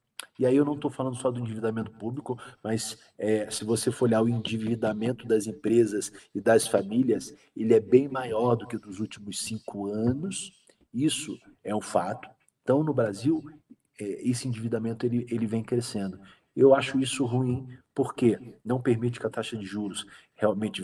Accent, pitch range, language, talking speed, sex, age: Brazilian, 110-130 Hz, Portuguese, 160 wpm, male, 40-59